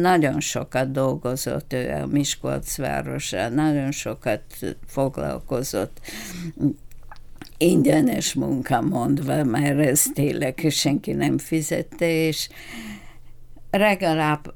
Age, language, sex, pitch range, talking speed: 60-79, Hungarian, female, 130-165 Hz, 80 wpm